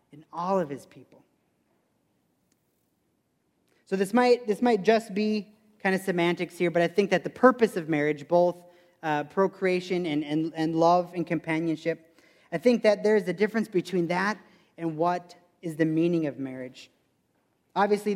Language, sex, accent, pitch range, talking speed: English, male, American, 155-195 Hz, 160 wpm